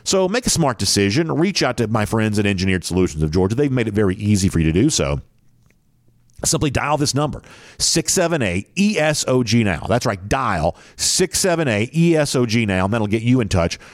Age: 50-69